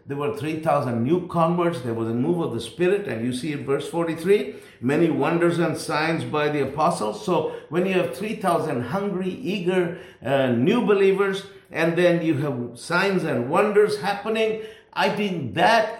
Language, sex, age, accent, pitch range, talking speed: English, male, 50-69, Indian, 125-170 Hz, 175 wpm